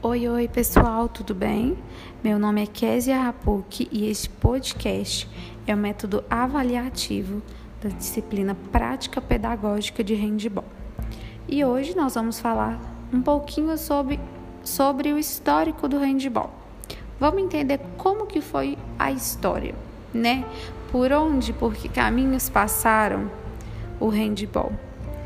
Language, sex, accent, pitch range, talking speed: Portuguese, female, Brazilian, 210-280 Hz, 125 wpm